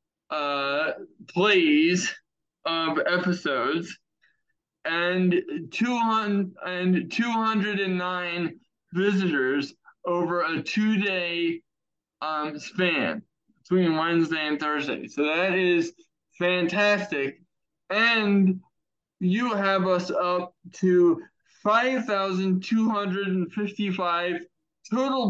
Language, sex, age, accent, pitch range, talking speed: English, male, 20-39, American, 160-195 Hz, 65 wpm